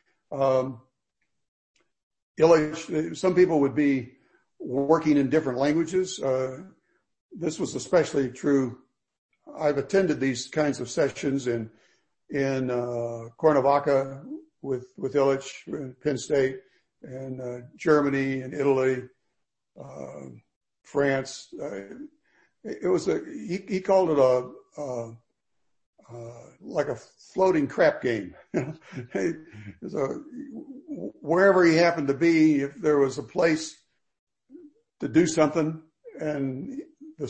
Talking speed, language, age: 110 wpm, English, 60-79